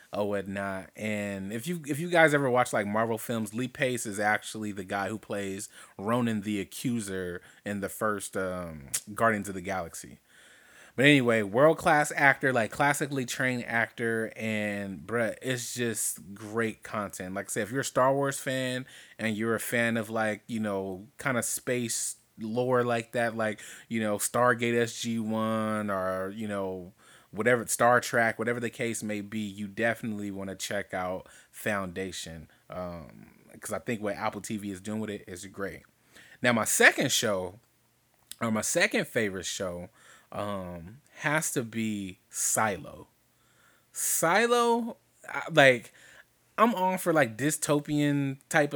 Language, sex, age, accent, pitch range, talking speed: English, male, 30-49, American, 100-125 Hz, 160 wpm